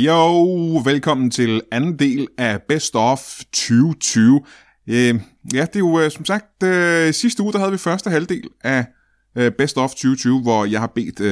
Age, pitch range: 20-39, 110-150 Hz